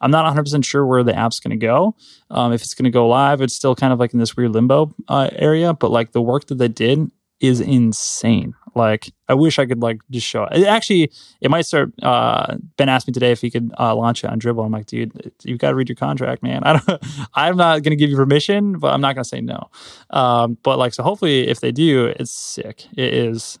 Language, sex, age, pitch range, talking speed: English, male, 20-39, 115-140 Hz, 250 wpm